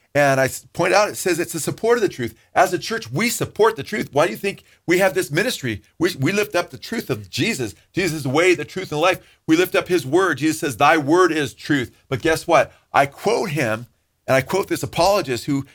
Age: 40-59